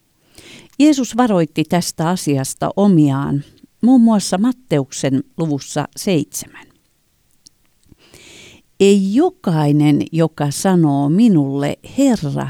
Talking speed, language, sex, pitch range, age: 75 wpm, Finnish, female, 145-220 Hz, 50-69